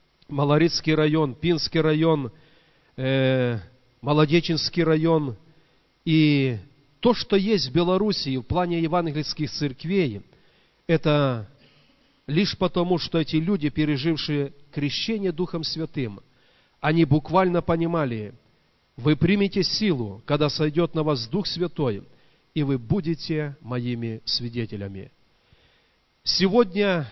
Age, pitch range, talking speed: 40-59, 130-170 Hz, 95 wpm